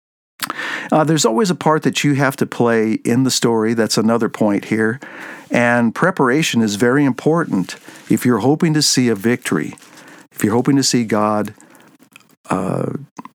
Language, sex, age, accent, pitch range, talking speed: English, male, 50-69, American, 110-145 Hz, 160 wpm